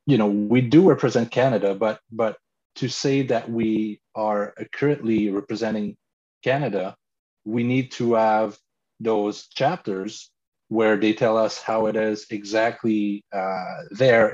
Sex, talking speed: male, 135 wpm